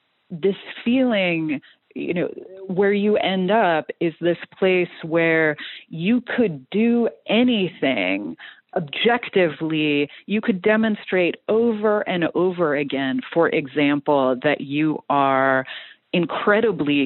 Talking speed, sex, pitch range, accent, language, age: 105 wpm, female, 150-200 Hz, American, English, 30-49